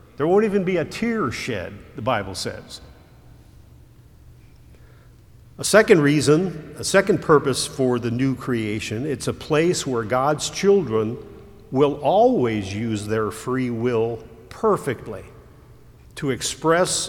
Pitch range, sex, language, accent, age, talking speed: 120-160 Hz, male, English, American, 50-69, 125 wpm